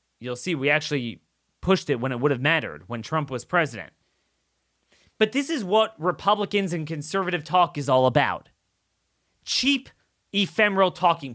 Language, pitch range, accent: English, 165-235 Hz, American